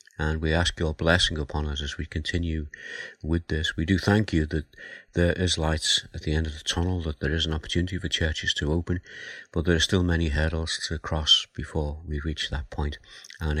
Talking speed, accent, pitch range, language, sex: 215 wpm, British, 75-90 Hz, English, male